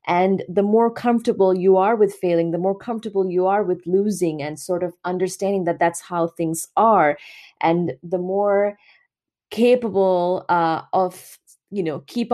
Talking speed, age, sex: 160 wpm, 30-49, female